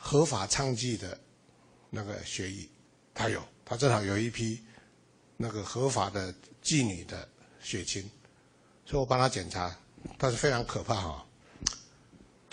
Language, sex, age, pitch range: Chinese, male, 60-79, 110-140 Hz